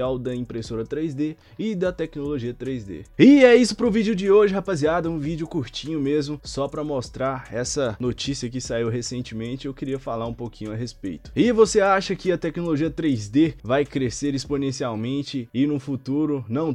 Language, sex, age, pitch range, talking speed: Portuguese, male, 20-39, 115-150 Hz, 175 wpm